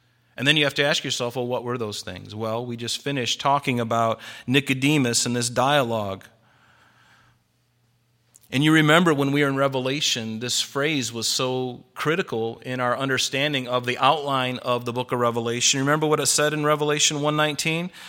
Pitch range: 130-165 Hz